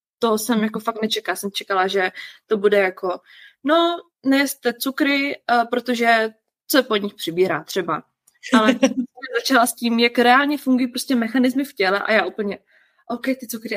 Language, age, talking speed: Czech, 20-39, 165 wpm